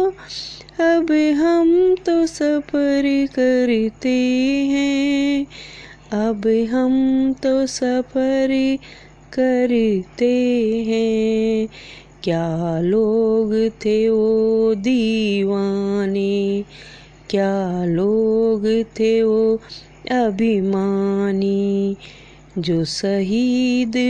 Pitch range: 225-285 Hz